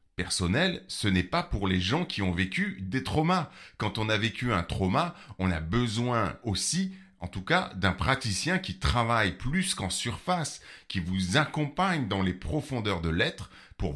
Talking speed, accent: 175 wpm, French